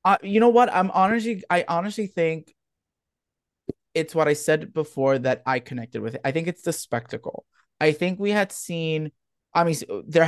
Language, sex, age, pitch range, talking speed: English, male, 20-39, 125-165 Hz, 185 wpm